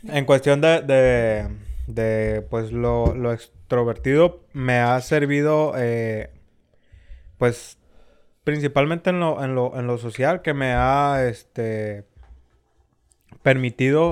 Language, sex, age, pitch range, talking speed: Spanish, male, 20-39, 115-140 Hz, 85 wpm